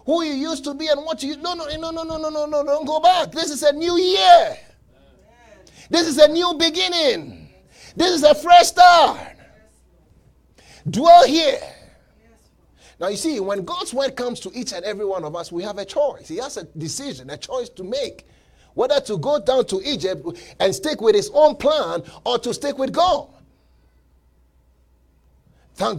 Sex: male